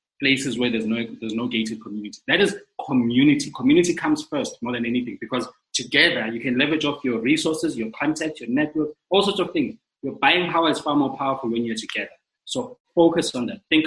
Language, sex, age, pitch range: English, male, 20-39, 115-175 Hz